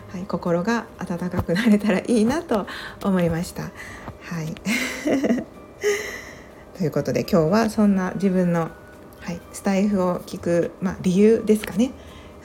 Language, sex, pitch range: Japanese, female, 170-230 Hz